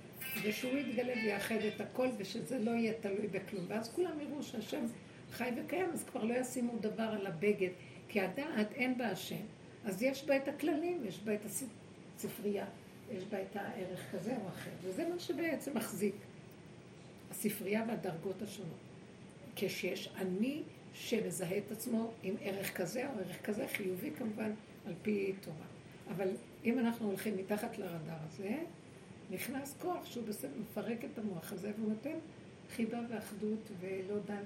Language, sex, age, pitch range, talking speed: Hebrew, female, 60-79, 190-230 Hz, 155 wpm